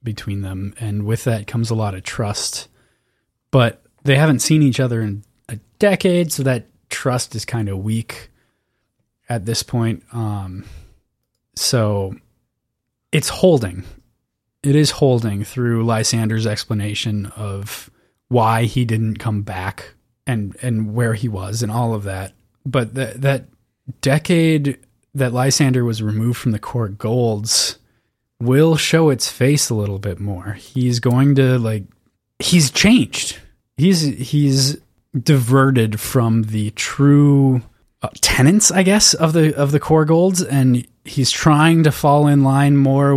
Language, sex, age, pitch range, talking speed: English, male, 20-39, 110-140 Hz, 145 wpm